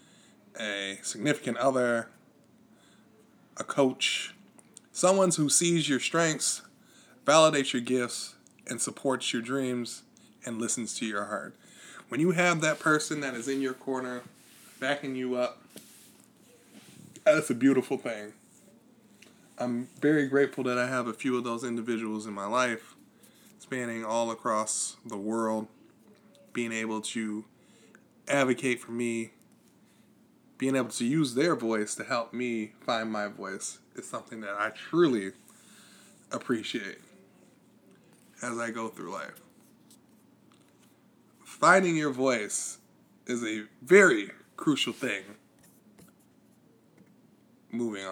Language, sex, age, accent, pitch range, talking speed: English, male, 20-39, American, 115-175 Hz, 120 wpm